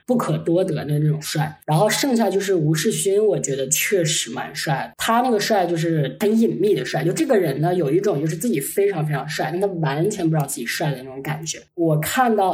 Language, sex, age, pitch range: Chinese, female, 20-39, 155-200 Hz